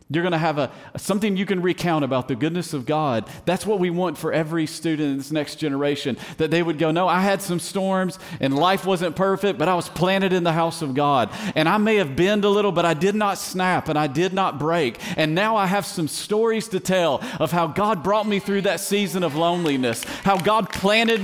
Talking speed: 235 wpm